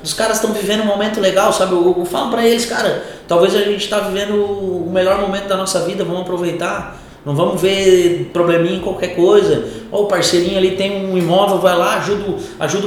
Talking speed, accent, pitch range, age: 215 wpm, Brazilian, 155-195 Hz, 20-39